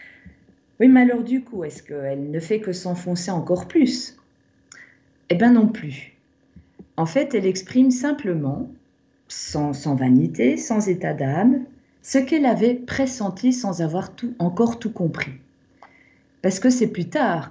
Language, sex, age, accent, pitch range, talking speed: French, female, 40-59, French, 150-215 Hz, 145 wpm